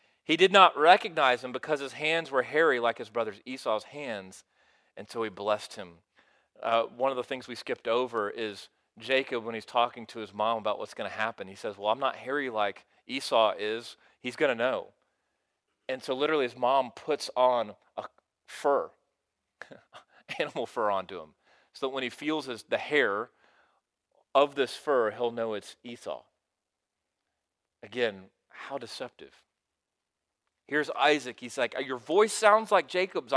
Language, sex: English, male